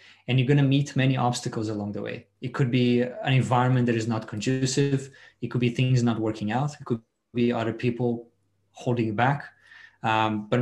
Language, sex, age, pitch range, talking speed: English, male, 20-39, 110-130 Hz, 205 wpm